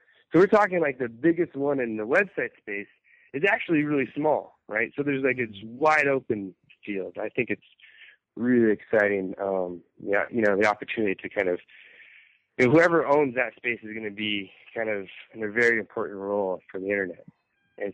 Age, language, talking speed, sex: 20-39, English, 195 wpm, male